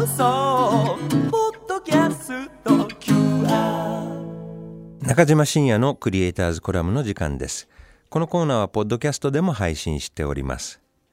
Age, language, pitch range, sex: 50-69, Japanese, 75-115 Hz, male